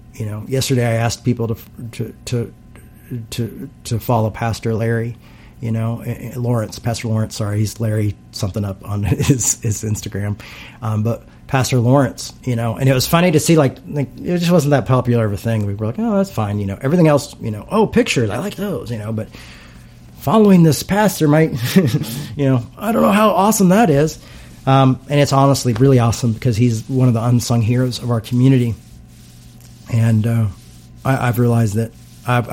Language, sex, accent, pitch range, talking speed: English, male, American, 105-125 Hz, 195 wpm